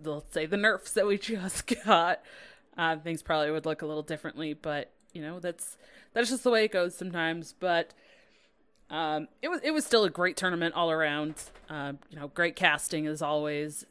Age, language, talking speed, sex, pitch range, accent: 20-39, English, 200 wpm, female, 155-225 Hz, American